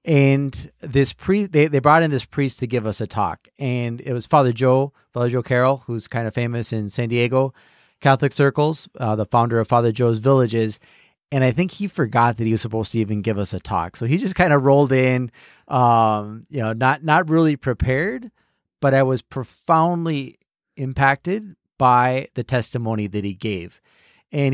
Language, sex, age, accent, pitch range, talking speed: English, male, 30-49, American, 115-140 Hz, 195 wpm